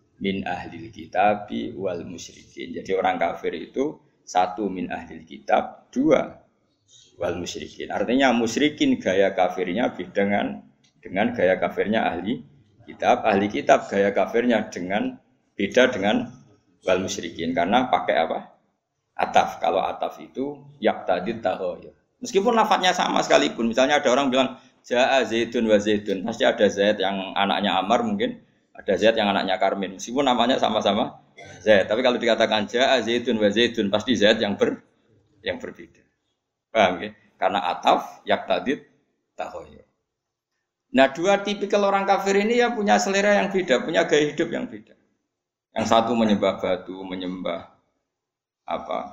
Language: Indonesian